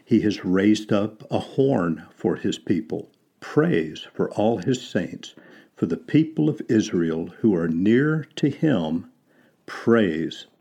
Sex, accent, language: male, American, English